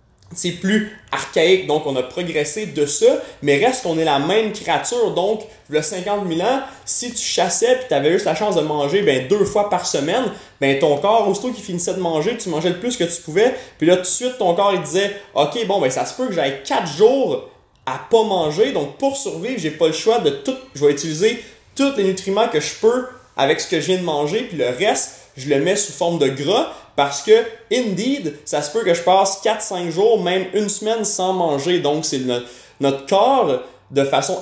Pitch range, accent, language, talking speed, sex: 150-225 Hz, Canadian, French, 230 wpm, male